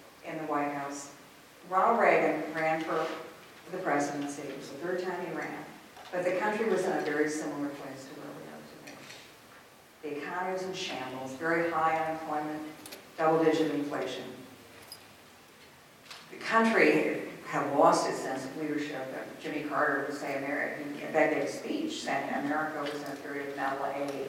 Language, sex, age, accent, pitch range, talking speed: English, female, 50-69, American, 145-180 Hz, 160 wpm